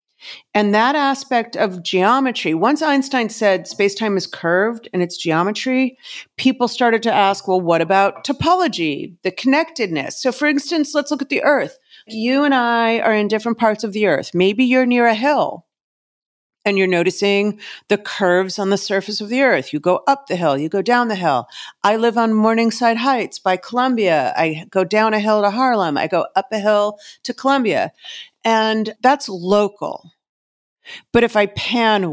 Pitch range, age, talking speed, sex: 185-235 Hz, 50-69, 180 wpm, female